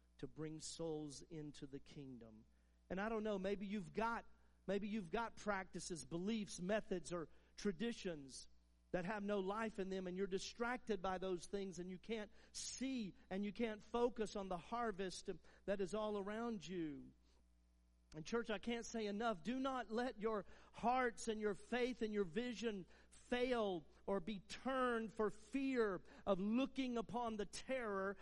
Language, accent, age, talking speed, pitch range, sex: English, American, 50-69, 165 wpm, 155-230 Hz, male